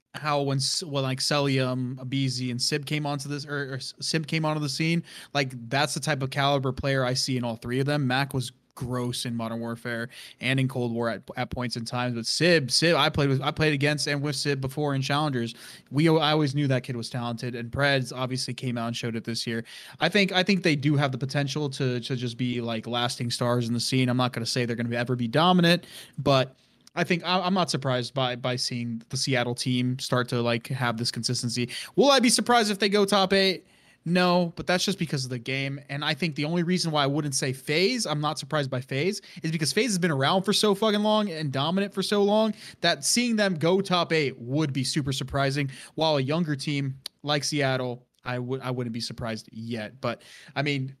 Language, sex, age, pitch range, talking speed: English, male, 20-39, 125-155 Hz, 235 wpm